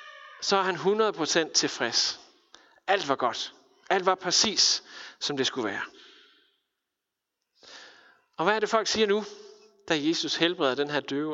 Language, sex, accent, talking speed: Danish, male, native, 150 wpm